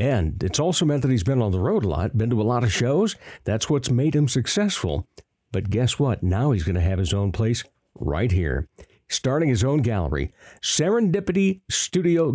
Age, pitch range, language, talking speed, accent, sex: 60-79, 105-155 Hz, English, 205 wpm, American, male